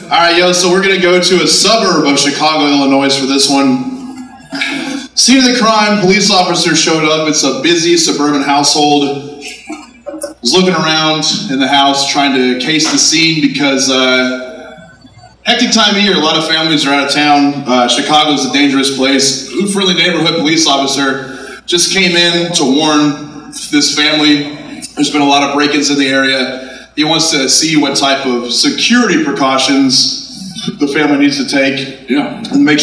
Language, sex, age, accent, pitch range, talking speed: English, male, 20-39, American, 135-170 Hz, 185 wpm